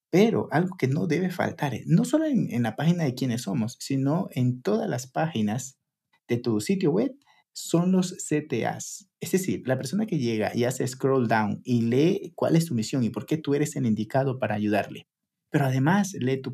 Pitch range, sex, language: 125-175 Hz, male, Spanish